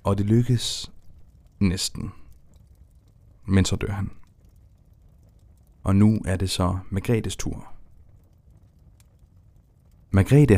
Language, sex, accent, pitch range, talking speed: Danish, male, native, 90-110 Hz, 90 wpm